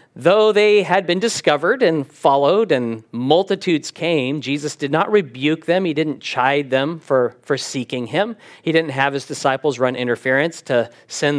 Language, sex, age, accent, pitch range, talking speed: English, male, 40-59, American, 135-210 Hz, 170 wpm